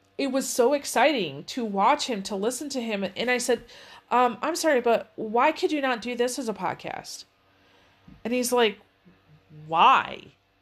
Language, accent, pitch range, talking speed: English, American, 210-290 Hz, 175 wpm